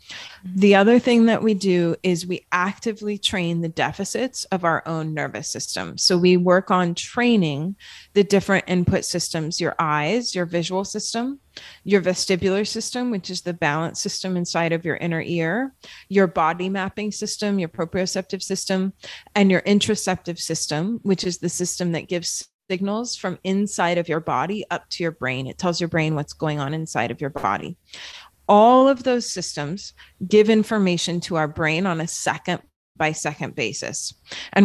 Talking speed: 170 wpm